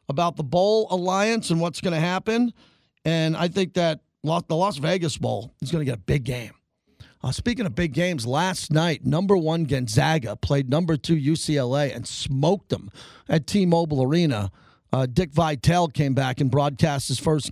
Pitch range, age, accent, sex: 140-180 Hz, 40-59, American, male